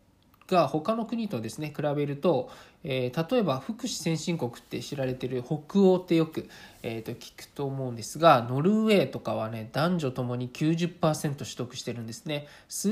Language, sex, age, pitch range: Japanese, male, 20-39, 130-180 Hz